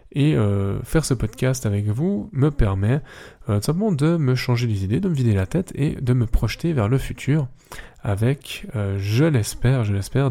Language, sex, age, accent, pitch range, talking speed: French, male, 10-29, French, 110-140 Hz, 200 wpm